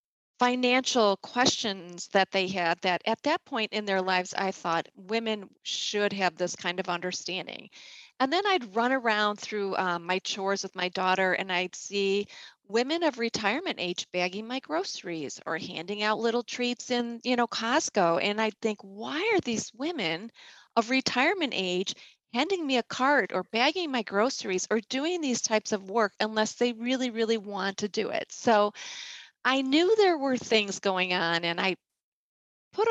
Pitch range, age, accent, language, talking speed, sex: 190-255 Hz, 30-49, American, English, 175 wpm, female